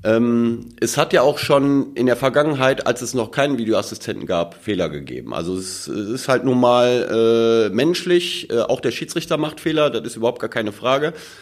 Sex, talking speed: male, 200 wpm